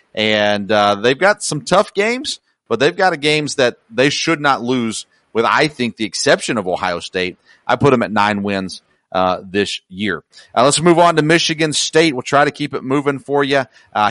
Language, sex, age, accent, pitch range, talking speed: English, male, 40-59, American, 120-150 Hz, 215 wpm